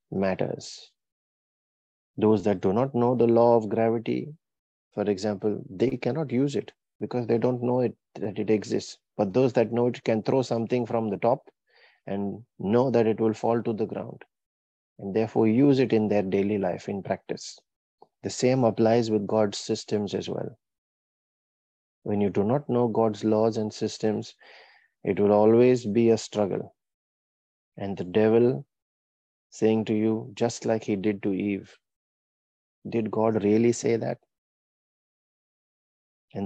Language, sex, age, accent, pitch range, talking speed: English, male, 30-49, Indian, 100-115 Hz, 155 wpm